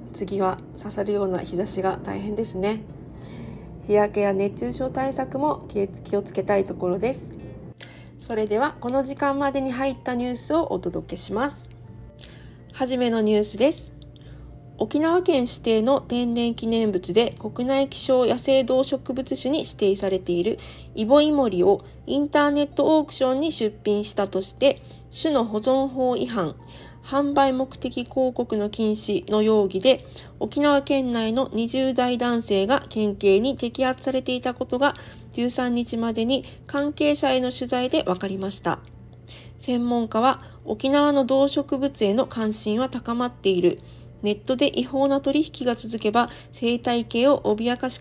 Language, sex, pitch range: Japanese, female, 205-270 Hz